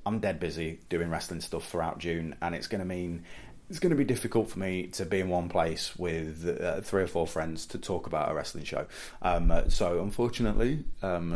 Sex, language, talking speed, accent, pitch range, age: male, English, 215 wpm, British, 80-95 Hz, 30-49